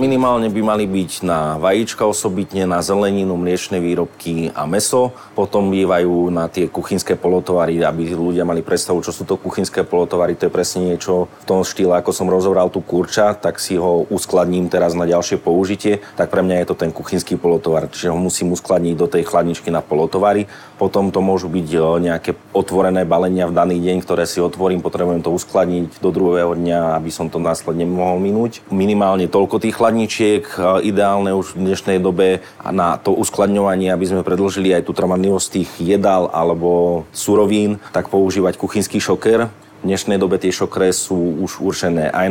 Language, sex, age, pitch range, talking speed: Slovak, male, 30-49, 85-100 Hz, 175 wpm